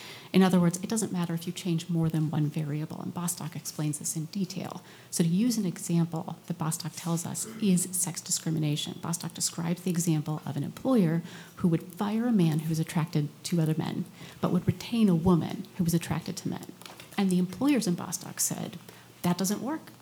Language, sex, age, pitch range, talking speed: English, female, 40-59, 165-190 Hz, 205 wpm